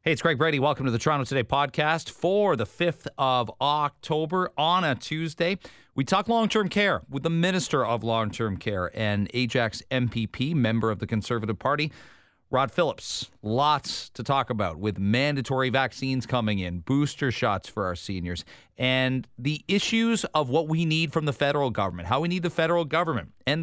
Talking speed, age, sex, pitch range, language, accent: 180 wpm, 40-59, male, 115-155 Hz, English, American